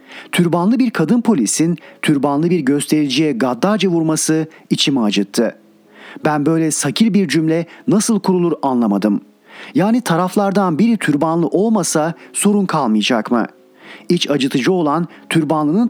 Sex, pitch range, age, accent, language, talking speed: male, 140-185 Hz, 40-59, native, Turkish, 115 wpm